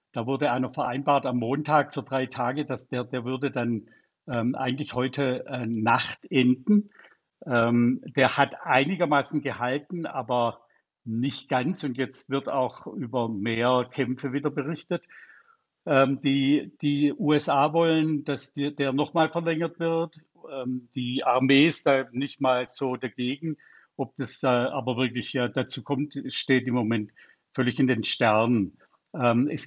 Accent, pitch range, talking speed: German, 125-150 Hz, 150 wpm